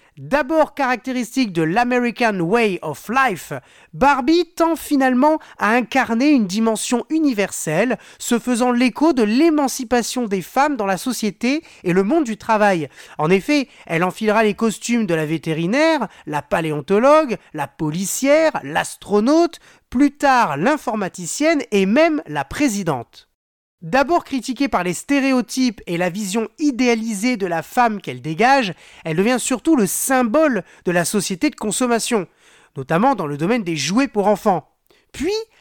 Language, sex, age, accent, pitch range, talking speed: French, male, 30-49, French, 190-275 Hz, 140 wpm